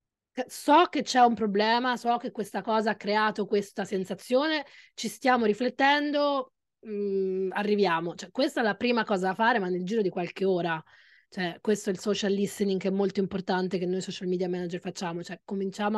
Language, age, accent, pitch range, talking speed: Italian, 20-39, native, 190-230 Hz, 175 wpm